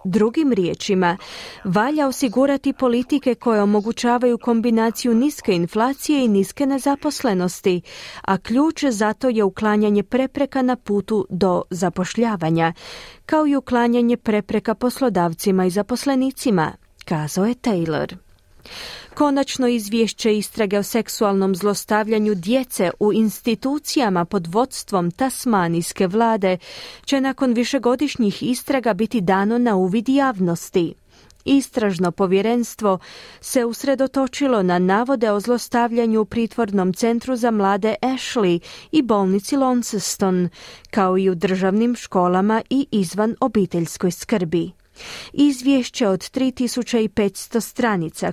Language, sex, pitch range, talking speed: Croatian, female, 190-250 Hz, 105 wpm